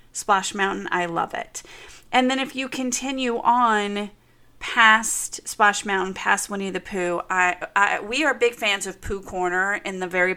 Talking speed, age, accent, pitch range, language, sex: 175 wpm, 30-49, American, 170-210 Hz, English, female